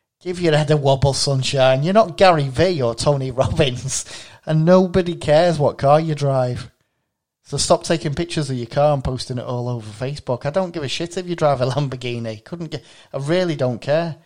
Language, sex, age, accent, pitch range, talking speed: English, male, 30-49, British, 115-145 Hz, 205 wpm